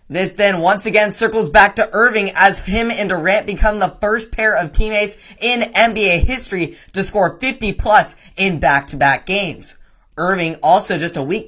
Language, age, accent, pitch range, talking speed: English, 10-29, American, 160-205 Hz, 165 wpm